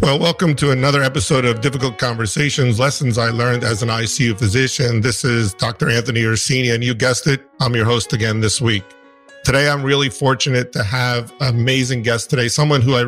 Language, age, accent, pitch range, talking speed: English, 50-69, American, 115-140 Hz, 195 wpm